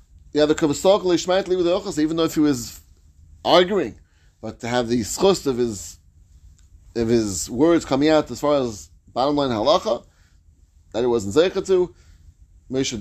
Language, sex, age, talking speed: English, male, 30-49, 145 wpm